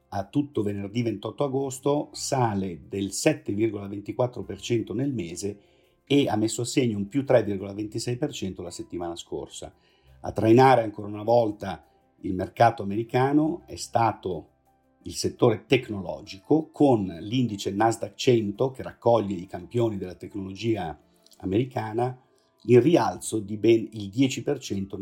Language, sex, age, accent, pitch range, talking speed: Italian, male, 50-69, native, 100-125 Hz, 120 wpm